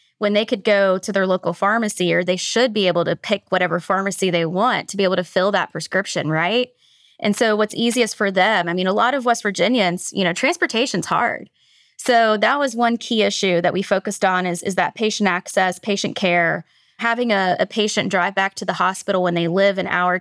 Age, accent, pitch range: 20-39, American, 180-210 Hz